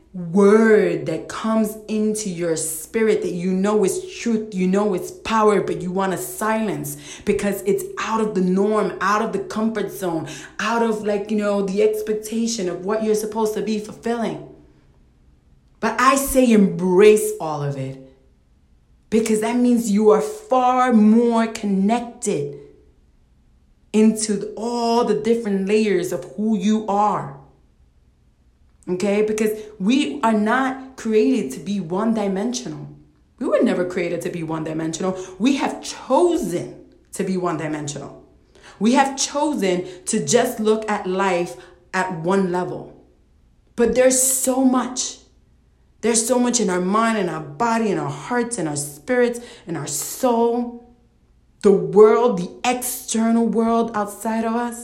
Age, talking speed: 40-59, 150 wpm